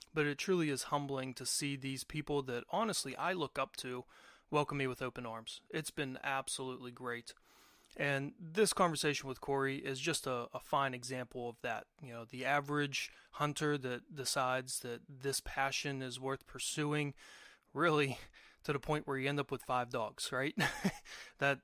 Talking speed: 175 wpm